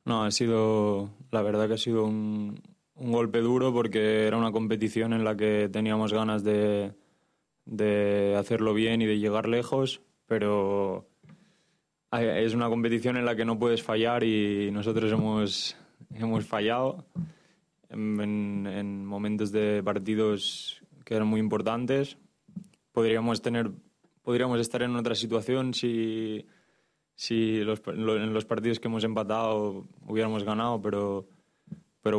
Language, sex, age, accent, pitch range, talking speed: French, male, 20-39, Spanish, 105-115 Hz, 135 wpm